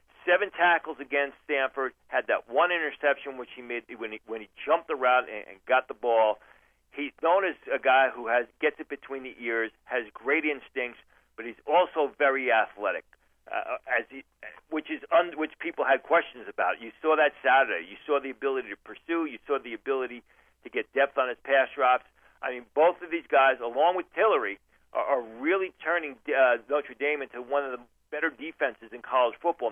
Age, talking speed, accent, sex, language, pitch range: 40-59, 200 wpm, American, male, English, 125-155 Hz